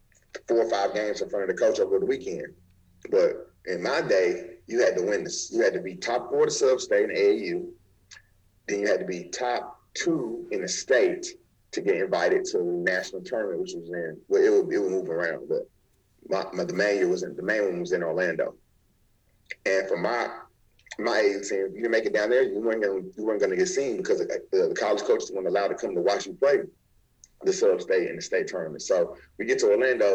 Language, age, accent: English, 30-49, American